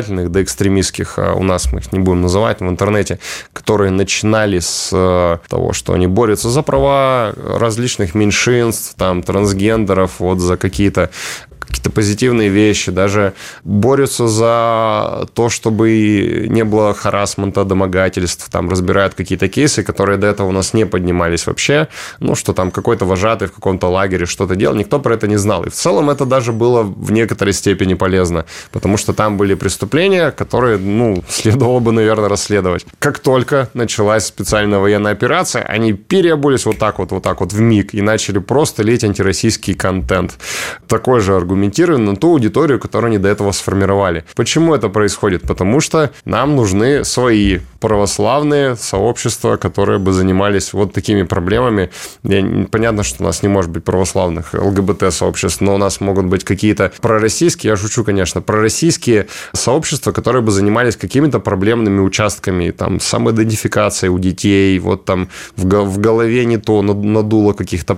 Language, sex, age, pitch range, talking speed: Russian, male, 20-39, 95-115 Hz, 155 wpm